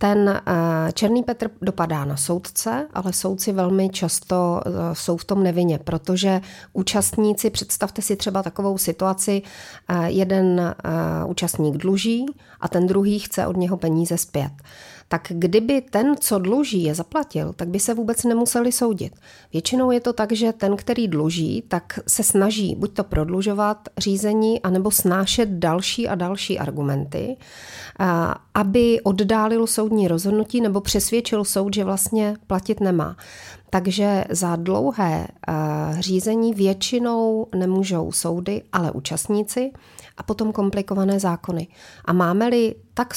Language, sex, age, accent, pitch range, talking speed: Czech, female, 40-59, native, 175-215 Hz, 130 wpm